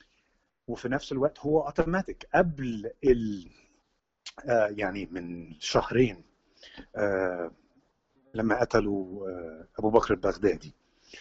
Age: 50-69